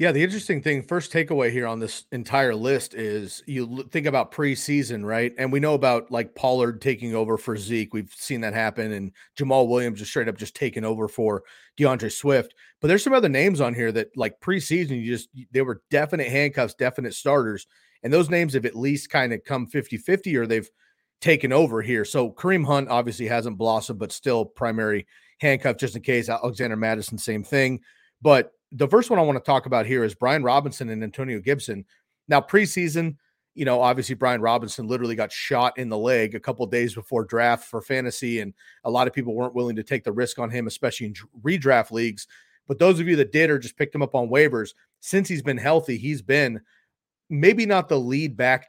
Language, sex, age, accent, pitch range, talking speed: English, male, 40-59, American, 115-145 Hz, 210 wpm